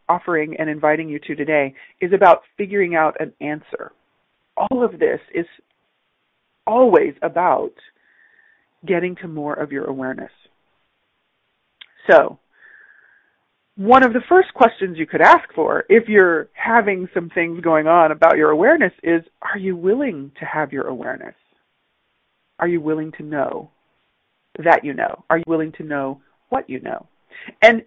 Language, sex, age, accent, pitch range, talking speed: English, female, 40-59, American, 155-260 Hz, 150 wpm